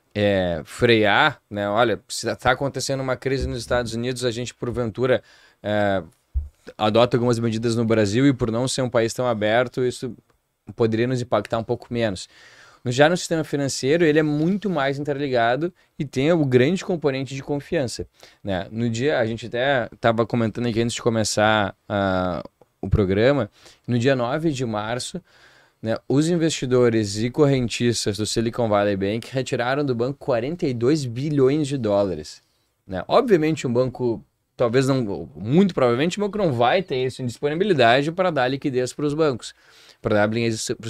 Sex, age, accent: male, 20-39, Brazilian